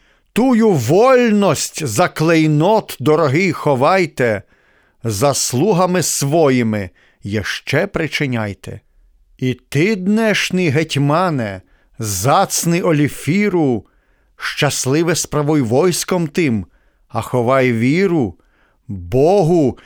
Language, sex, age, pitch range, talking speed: Ukrainian, male, 50-69, 125-180 Hz, 75 wpm